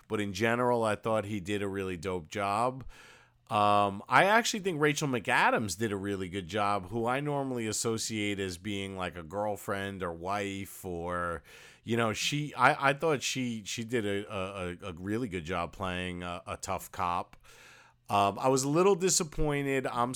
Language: English